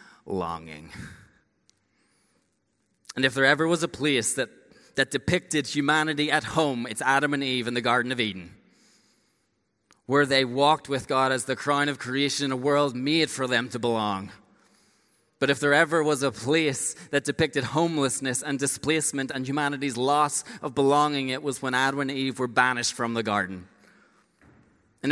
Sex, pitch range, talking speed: male, 140-180 Hz, 165 wpm